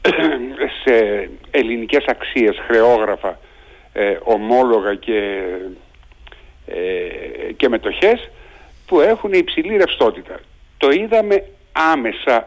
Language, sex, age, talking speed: Greek, male, 60-79, 70 wpm